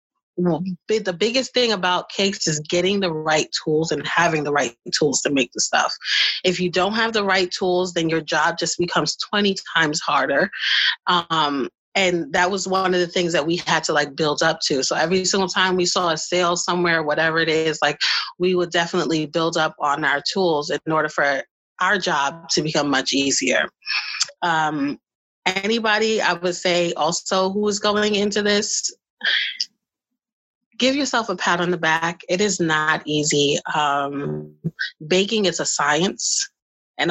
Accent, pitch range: American, 160-190 Hz